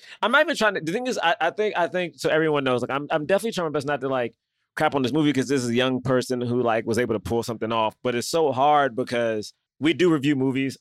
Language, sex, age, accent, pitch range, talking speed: English, male, 20-39, American, 130-170 Hz, 295 wpm